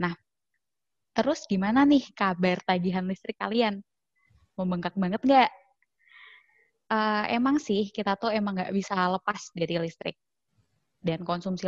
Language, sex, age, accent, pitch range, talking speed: Indonesian, female, 20-39, native, 175-225 Hz, 125 wpm